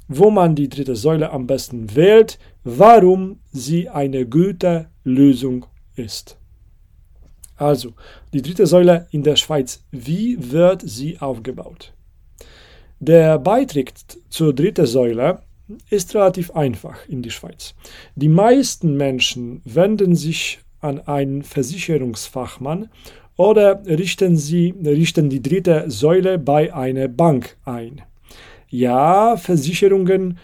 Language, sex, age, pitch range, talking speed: German, male, 40-59, 130-175 Hz, 110 wpm